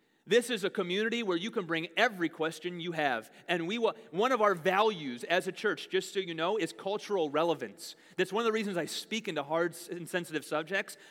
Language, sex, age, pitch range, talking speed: English, male, 30-49, 155-200 Hz, 220 wpm